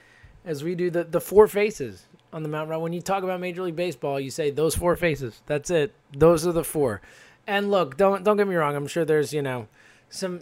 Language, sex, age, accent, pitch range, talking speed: English, male, 20-39, American, 135-200 Hz, 240 wpm